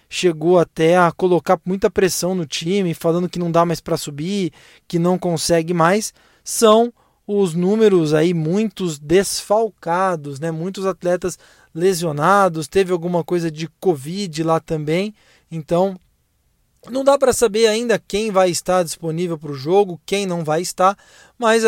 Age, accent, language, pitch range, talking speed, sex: 20-39, Brazilian, Portuguese, 170-215 Hz, 150 wpm, male